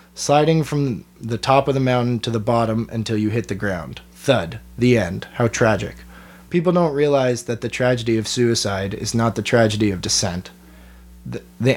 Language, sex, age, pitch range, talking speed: English, male, 20-39, 105-130 Hz, 185 wpm